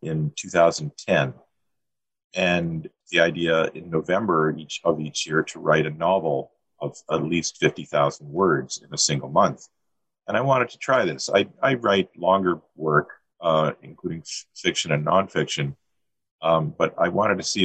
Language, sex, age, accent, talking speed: English, male, 40-59, American, 150 wpm